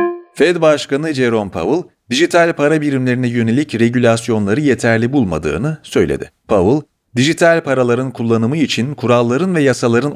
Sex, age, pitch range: male, 40-59, 110-155 Hz